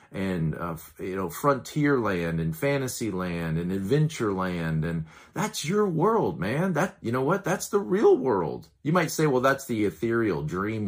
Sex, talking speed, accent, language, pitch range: male, 180 wpm, American, English, 80-125 Hz